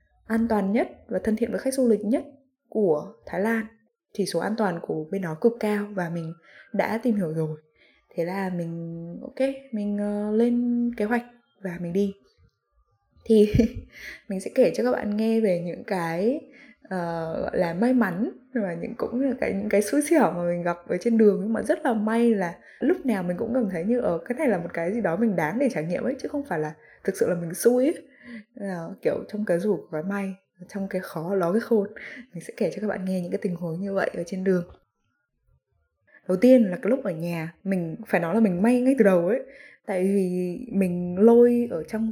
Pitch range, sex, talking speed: 175-235 Hz, female, 230 wpm